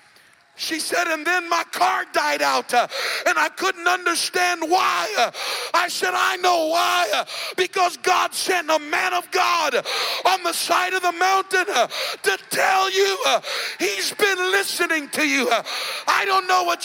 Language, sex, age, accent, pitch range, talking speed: English, male, 50-69, American, 320-370 Hz, 165 wpm